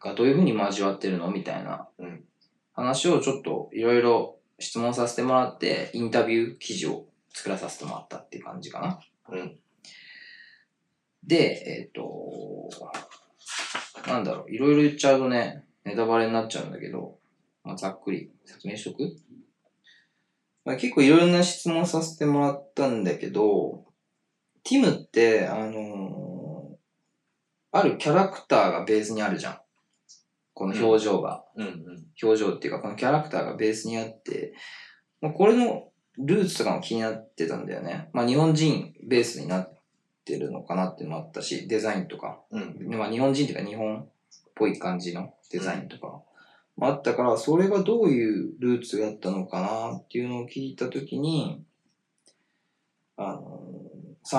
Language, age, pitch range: Japanese, 20-39, 110-155 Hz